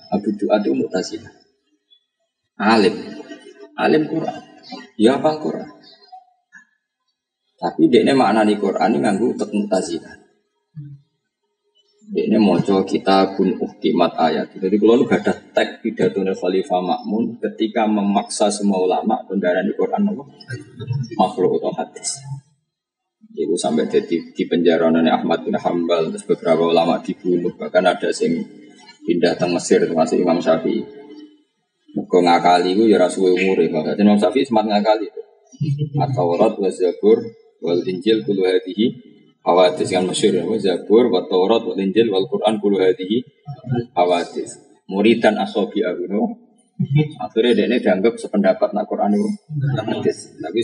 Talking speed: 135 wpm